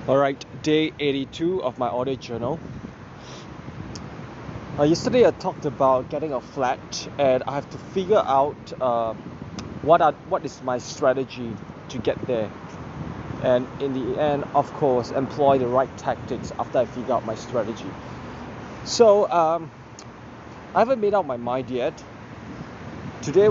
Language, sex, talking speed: English, male, 145 wpm